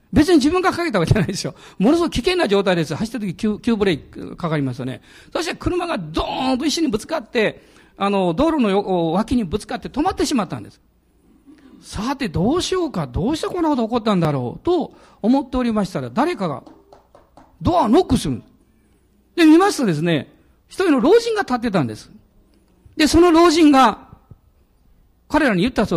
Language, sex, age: Japanese, male, 50-69